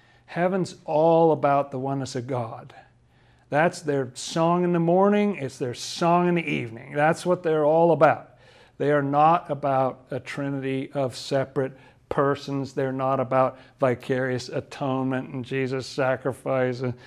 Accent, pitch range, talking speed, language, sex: American, 130-155 Hz, 145 wpm, English, male